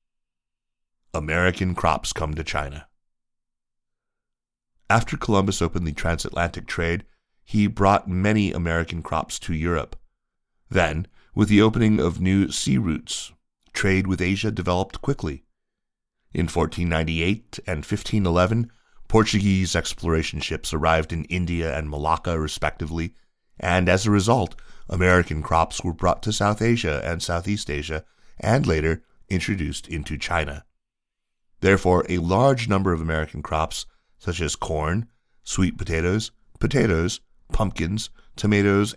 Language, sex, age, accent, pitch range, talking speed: English, male, 30-49, American, 80-100 Hz, 120 wpm